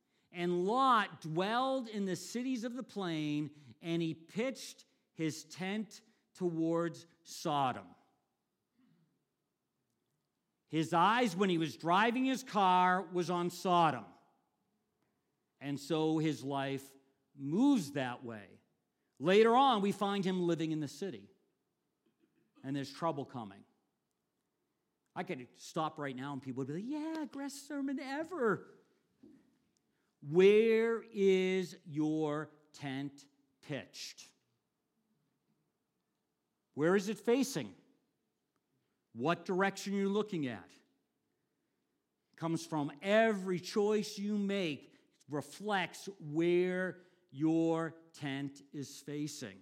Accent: American